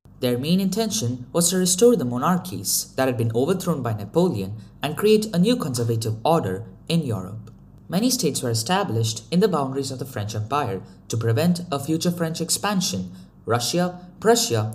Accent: Indian